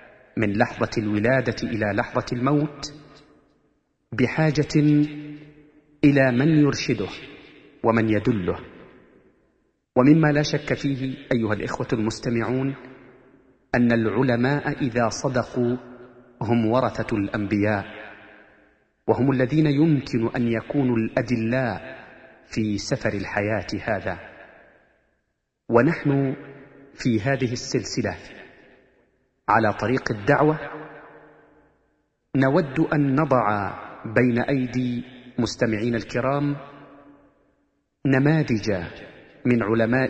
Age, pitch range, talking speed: 40-59, 115-145 Hz, 80 wpm